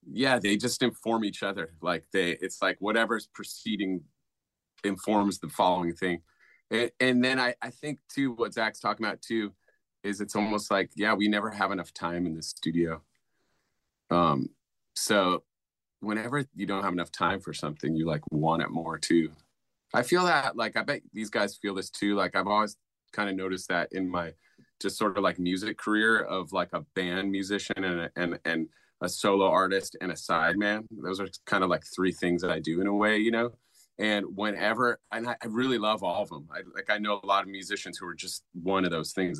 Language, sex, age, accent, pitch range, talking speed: English, male, 30-49, American, 90-110 Hz, 210 wpm